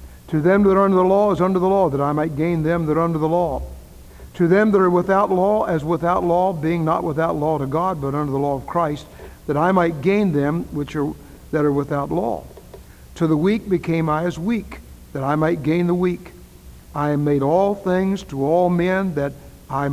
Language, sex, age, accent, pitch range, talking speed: English, male, 60-79, American, 130-180 Hz, 225 wpm